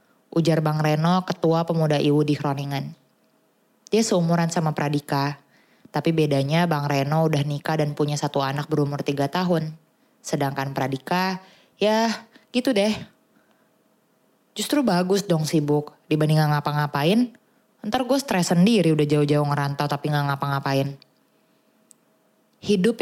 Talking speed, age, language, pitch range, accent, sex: 125 wpm, 20-39, English, 145-175 Hz, Indonesian, female